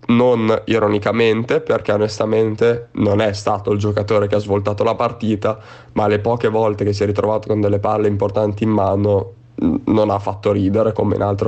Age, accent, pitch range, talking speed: 20-39, native, 105-120 Hz, 190 wpm